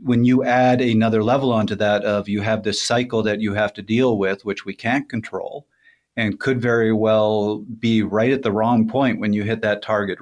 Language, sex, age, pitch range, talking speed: English, male, 40-59, 105-120 Hz, 215 wpm